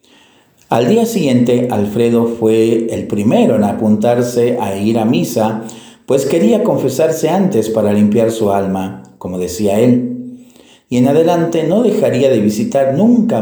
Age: 50-69